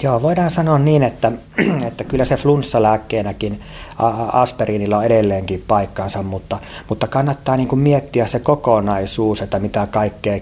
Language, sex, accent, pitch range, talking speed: Finnish, male, native, 95-115 Hz, 140 wpm